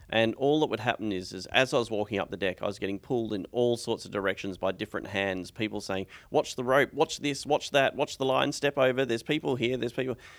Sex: male